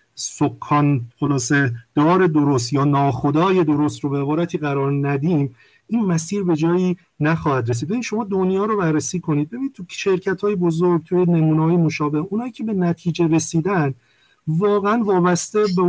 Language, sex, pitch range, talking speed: Persian, male, 150-190 Hz, 145 wpm